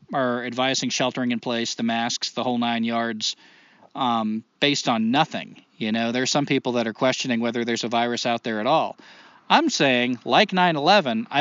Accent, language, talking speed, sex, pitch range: American, English, 185 wpm, male, 115-175 Hz